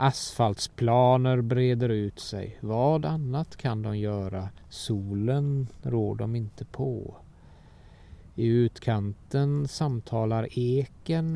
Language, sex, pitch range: Swedish, male, 100-125 Hz